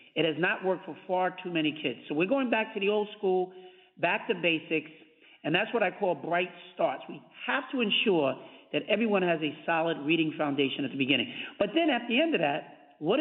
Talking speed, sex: 225 wpm, male